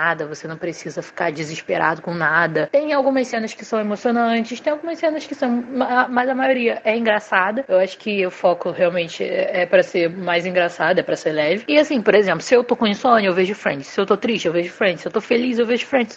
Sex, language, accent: female, Portuguese, Brazilian